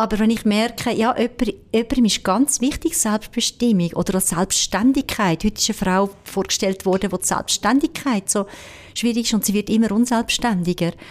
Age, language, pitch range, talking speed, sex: 50-69, German, 195-235 Hz, 160 wpm, female